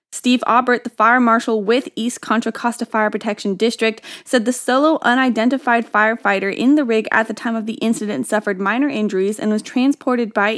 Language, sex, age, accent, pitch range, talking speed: English, female, 10-29, American, 205-250 Hz, 185 wpm